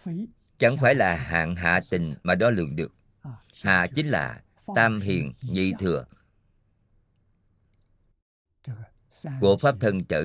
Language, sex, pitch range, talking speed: Vietnamese, male, 95-120 Hz, 125 wpm